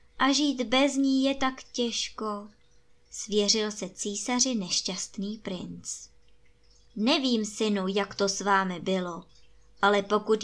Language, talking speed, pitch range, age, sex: Czech, 120 wpm, 190-245 Hz, 20-39, male